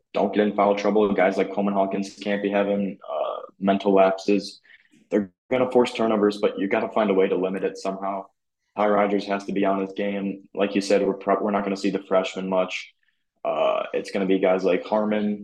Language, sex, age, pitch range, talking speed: English, male, 20-39, 95-105 Hz, 235 wpm